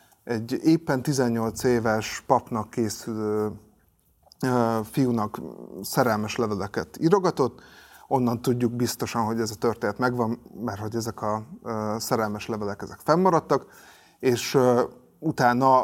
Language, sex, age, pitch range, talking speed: Hungarian, male, 30-49, 110-130 Hz, 105 wpm